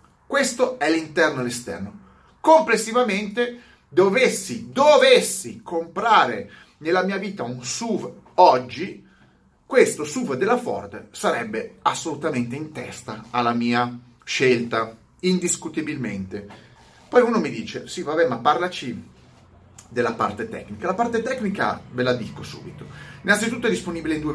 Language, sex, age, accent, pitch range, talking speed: Italian, male, 30-49, native, 120-200 Hz, 125 wpm